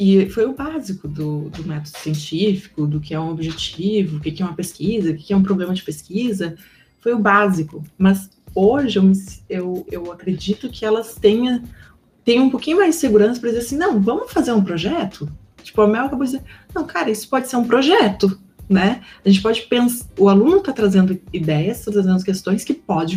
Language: Portuguese